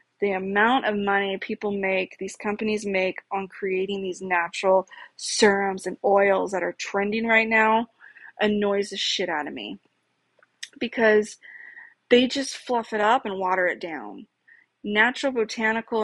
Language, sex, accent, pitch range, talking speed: English, female, American, 195-225 Hz, 145 wpm